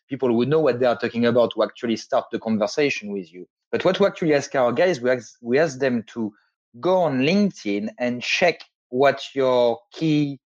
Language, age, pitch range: English, 30-49, 115-145 Hz